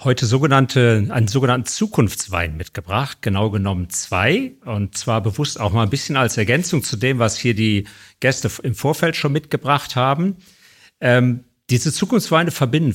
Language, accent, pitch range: German, German, 105-140 Hz